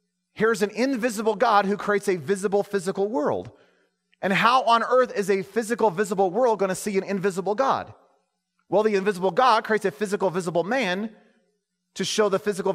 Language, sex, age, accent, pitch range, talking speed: English, male, 30-49, American, 195-265 Hz, 180 wpm